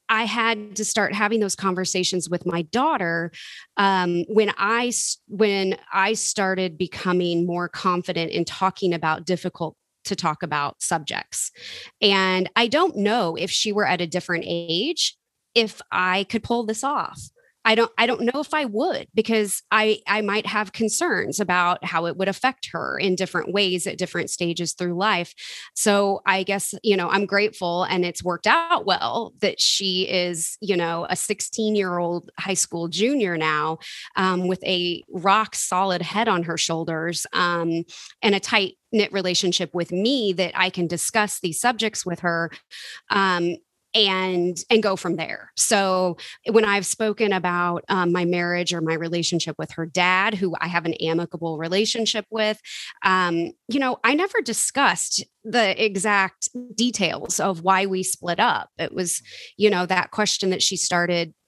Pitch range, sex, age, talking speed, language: 175-215 Hz, female, 20-39, 165 wpm, English